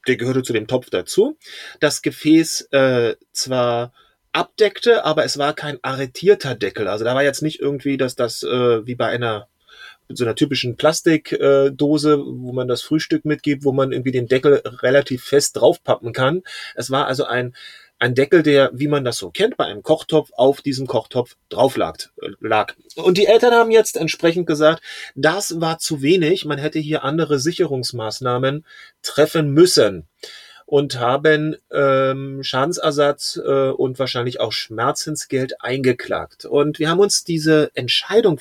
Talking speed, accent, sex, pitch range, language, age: 160 wpm, German, male, 135-170 Hz, German, 30-49